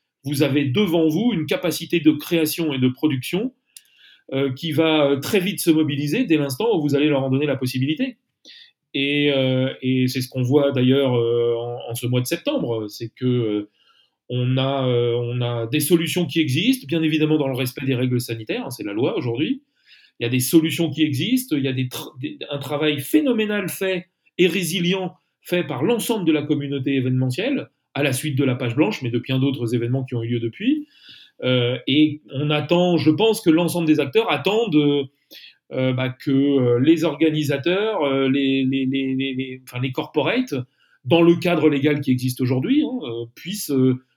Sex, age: male, 40-59